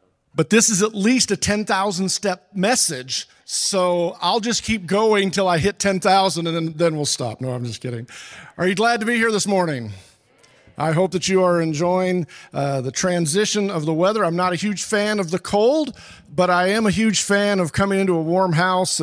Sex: male